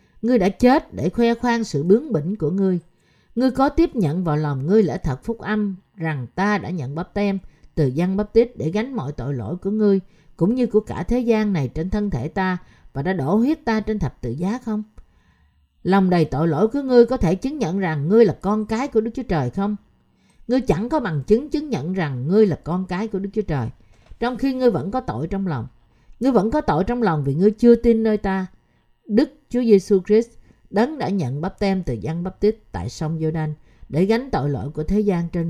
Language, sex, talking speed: Vietnamese, female, 235 wpm